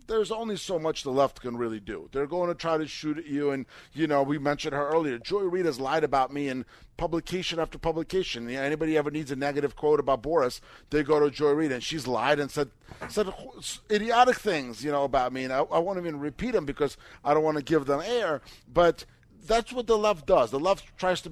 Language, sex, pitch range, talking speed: English, male, 130-175 Hz, 240 wpm